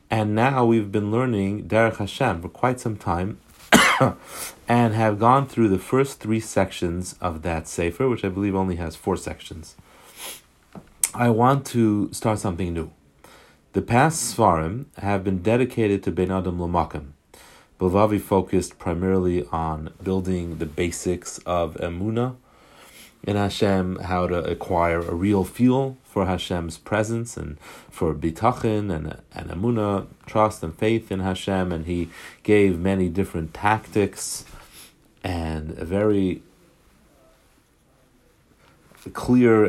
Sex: male